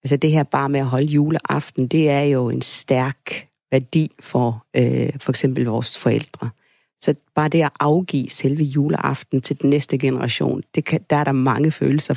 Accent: native